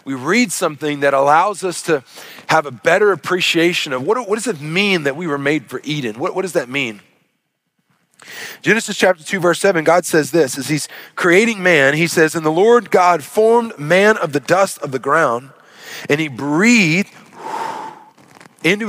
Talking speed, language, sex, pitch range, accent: 185 wpm, English, male, 130-175 Hz, American